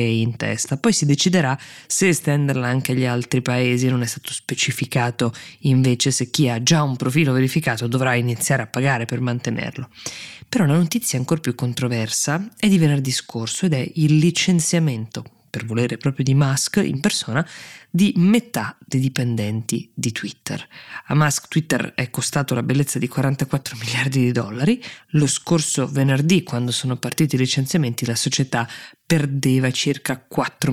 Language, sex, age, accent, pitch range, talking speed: Italian, female, 20-39, native, 125-150 Hz, 160 wpm